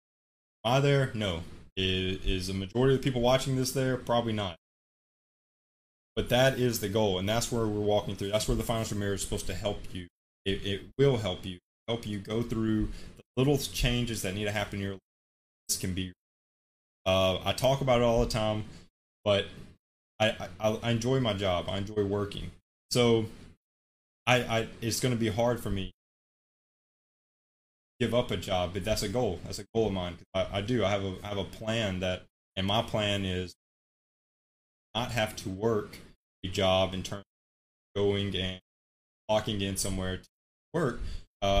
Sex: male